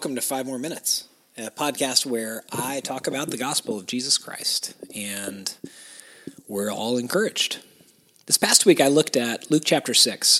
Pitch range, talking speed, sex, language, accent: 115-160 Hz, 165 wpm, male, English, American